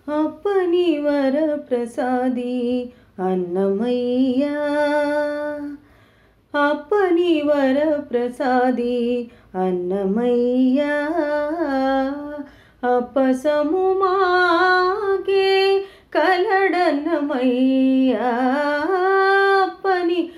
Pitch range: 250-310 Hz